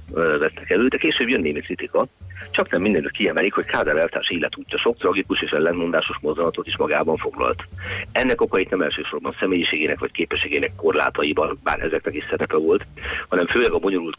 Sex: male